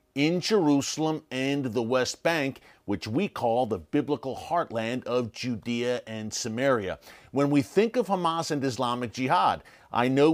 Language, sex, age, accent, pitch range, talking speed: English, male, 40-59, American, 125-165 Hz, 150 wpm